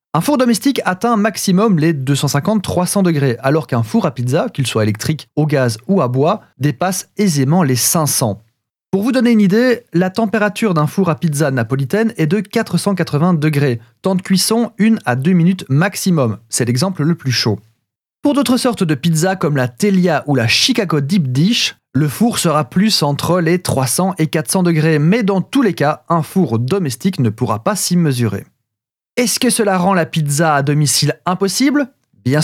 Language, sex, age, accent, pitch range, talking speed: French, male, 30-49, French, 135-195 Hz, 185 wpm